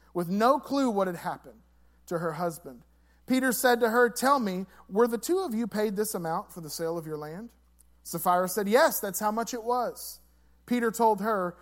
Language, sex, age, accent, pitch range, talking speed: English, male, 40-59, American, 125-200 Hz, 205 wpm